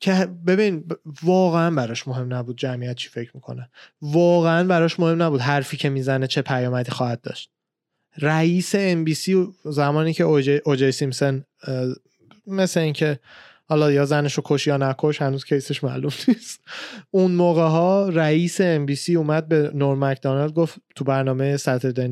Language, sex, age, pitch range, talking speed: Persian, male, 20-39, 140-175 Hz, 150 wpm